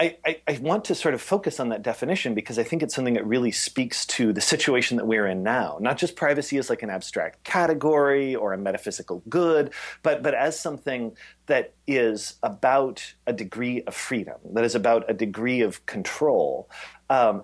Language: English